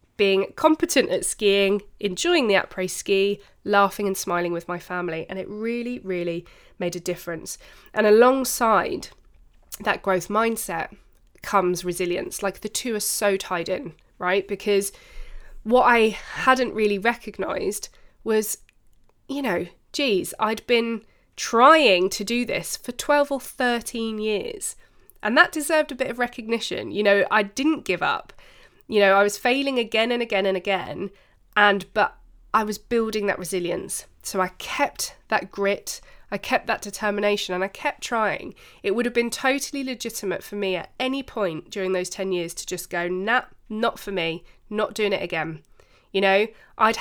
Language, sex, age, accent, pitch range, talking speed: English, female, 20-39, British, 190-235 Hz, 165 wpm